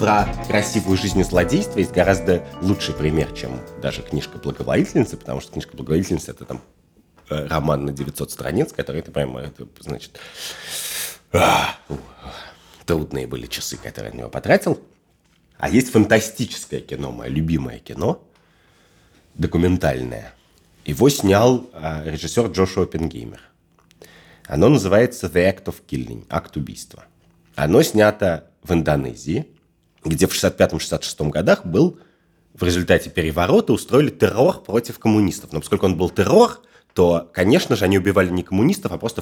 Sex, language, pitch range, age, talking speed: male, Russian, 75-100 Hz, 30-49, 130 wpm